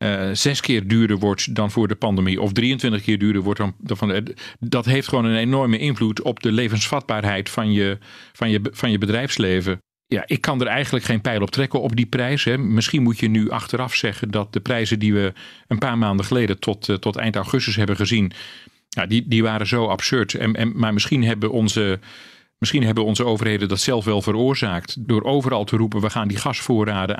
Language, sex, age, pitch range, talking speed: Dutch, male, 40-59, 105-125 Hz, 190 wpm